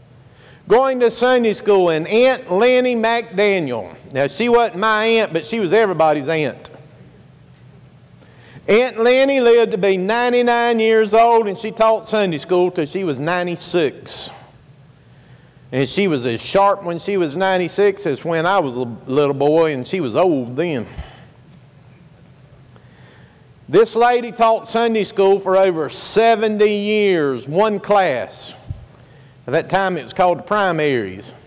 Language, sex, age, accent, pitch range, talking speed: English, male, 50-69, American, 135-205 Hz, 140 wpm